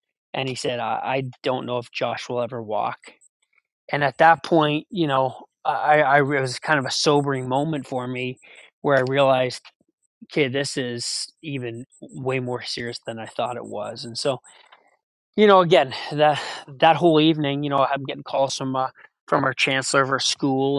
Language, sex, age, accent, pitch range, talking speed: English, male, 20-39, American, 125-145 Hz, 190 wpm